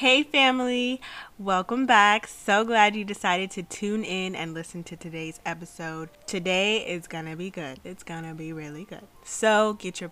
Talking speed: 170 wpm